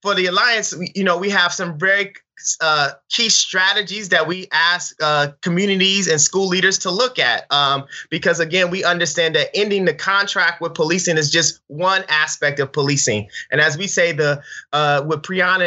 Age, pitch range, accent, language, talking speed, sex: 30-49, 150-190 Hz, American, English, 190 wpm, male